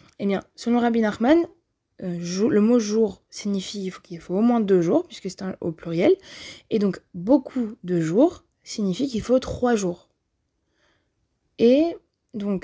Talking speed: 145 wpm